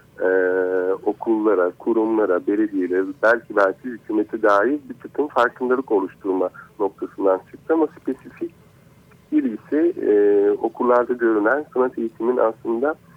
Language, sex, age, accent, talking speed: Turkish, male, 50-69, native, 105 wpm